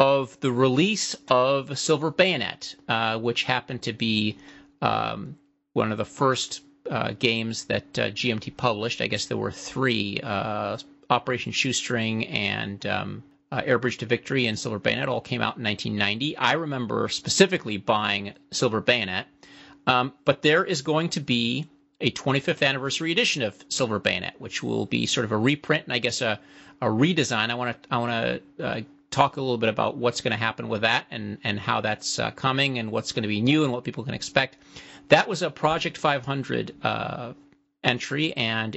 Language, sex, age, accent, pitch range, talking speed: English, male, 40-59, American, 110-145 Hz, 180 wpm